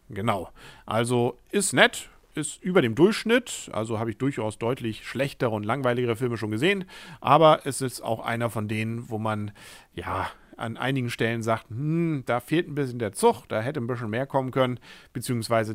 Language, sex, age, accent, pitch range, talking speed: German, male, 40-59, German, 110-145 Hz, 185 wpm